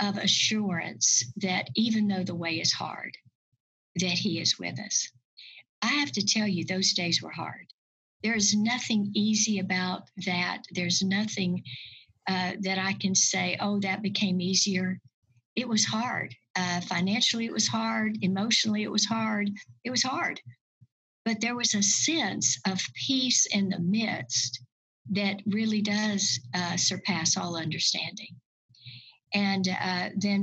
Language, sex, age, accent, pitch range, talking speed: English, female, 60-79, American, 175-205 Hz, 150 wpm